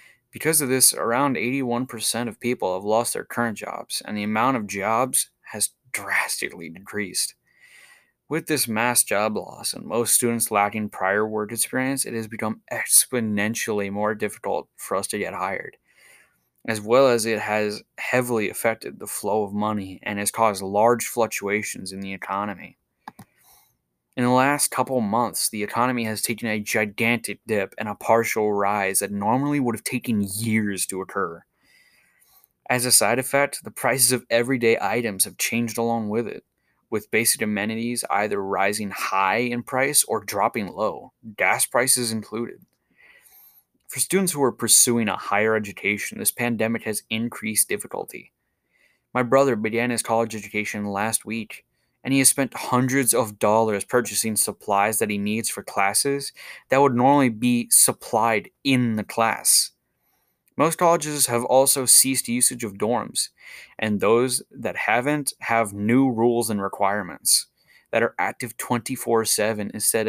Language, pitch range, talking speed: English, 105-125 Hz, 155 wpm